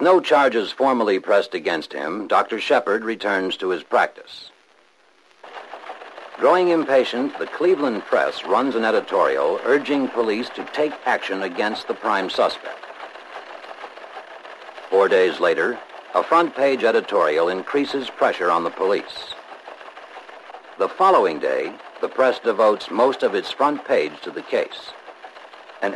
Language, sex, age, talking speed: English, male, 60-79, 130 wpm